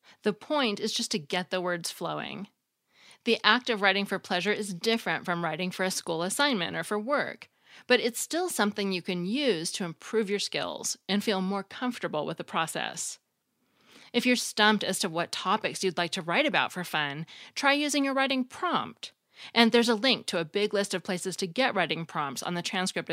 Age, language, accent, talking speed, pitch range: 30-49, English, American, 210 wpm, 170-225 Hz